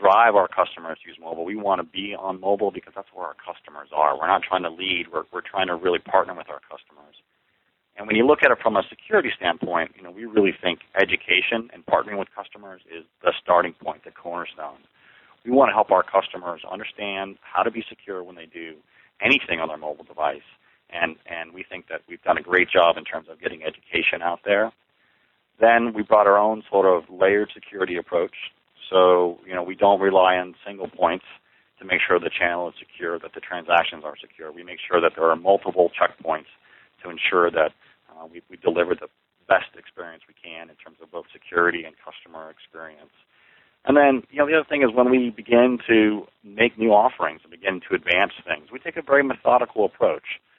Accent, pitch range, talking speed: American, 90-115 Hz, 210 wpm